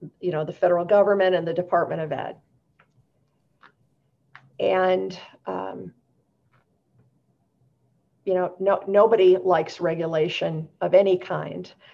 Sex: female